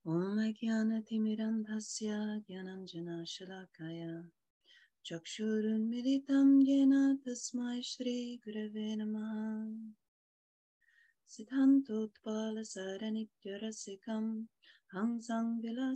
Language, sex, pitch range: English, female, 190-230 Hz